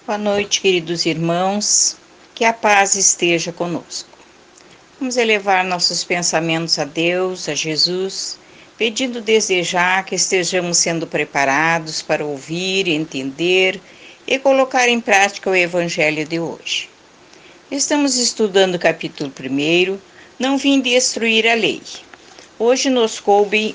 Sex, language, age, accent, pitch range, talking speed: female, Portuguese, 50-69, Brazilian, 170-235 Hz, 120 wpm